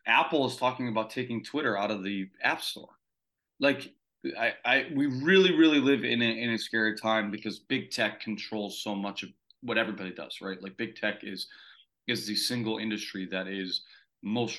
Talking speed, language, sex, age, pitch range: 190 wpm, English, male, 30-49, 95-125 Hz